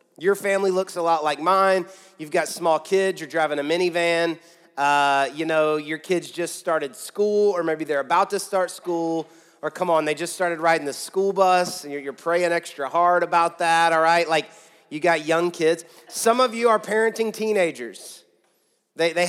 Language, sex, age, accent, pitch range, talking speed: English, male, 30-49, American, 155-190 Hz, 195 wpm